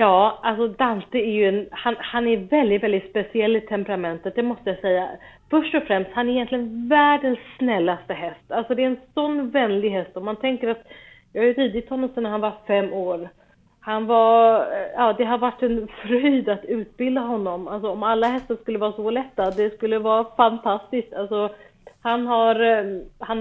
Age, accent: 30-49, native